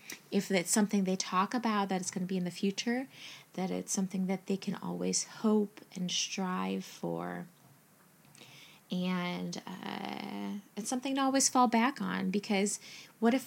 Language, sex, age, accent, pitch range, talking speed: English, female, 20-39, American, 185-235 Hz, 165 wpm